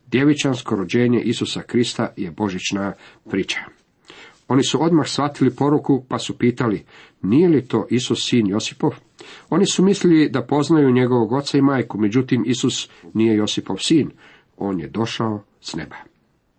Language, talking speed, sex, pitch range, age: Croatian, 145 wpm, male, 110-135 Hz, 50-69